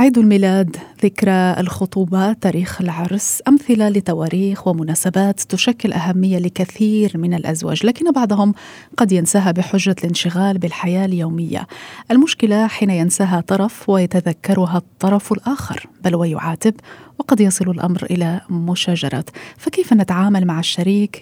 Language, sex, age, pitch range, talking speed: Arabic, female, 30-49, 185-220 Hz, 115 wpm